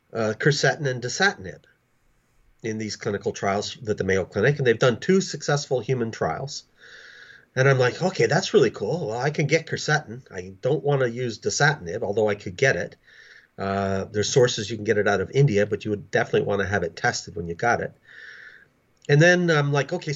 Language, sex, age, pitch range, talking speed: English, male, 40-59, 115-150 Hz, 210 wpm